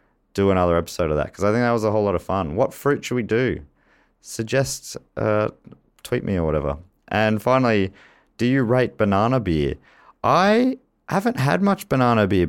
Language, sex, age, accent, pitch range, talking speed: English, male, 30-49, Australian, 90-120 Hz, 185 wpm